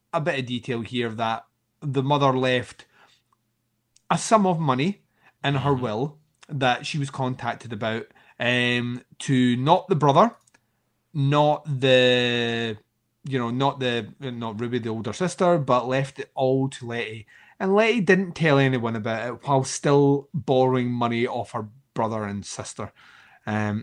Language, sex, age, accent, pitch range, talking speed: English, male, 30-49, British, 120-145 Hz, 150 wpm